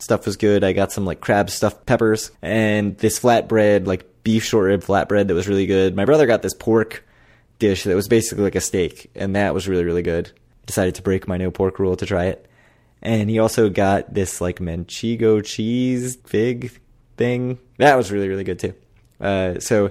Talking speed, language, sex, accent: 205 wpm, English, male, American